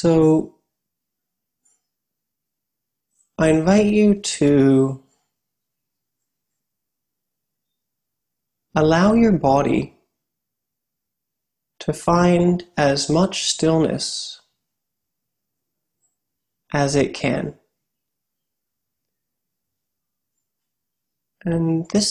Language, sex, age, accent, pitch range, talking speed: English, male, 30-49, American, 140-170 Hz, 50 wpm